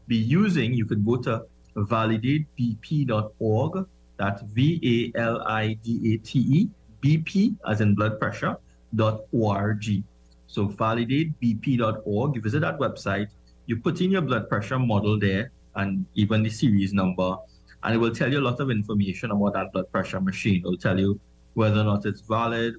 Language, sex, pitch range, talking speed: English, male, 95-115 Hz, 155 wpm